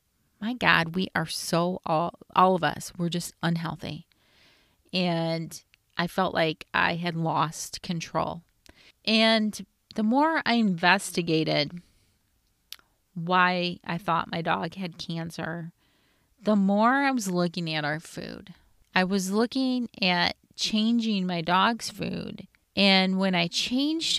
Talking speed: 130 wpm